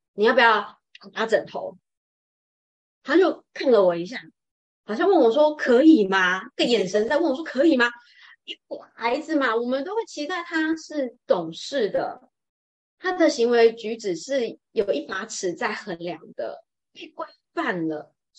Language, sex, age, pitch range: Chinese, female, 20-39, 185-310 Hz